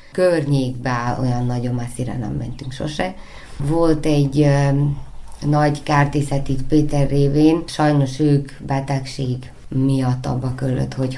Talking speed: 115 wpm